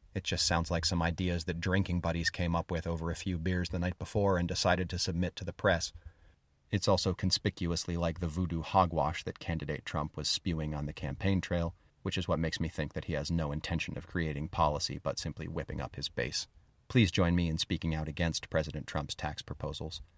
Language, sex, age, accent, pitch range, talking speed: English, male, 30-49, American, 80-95 Hz, 215 wpm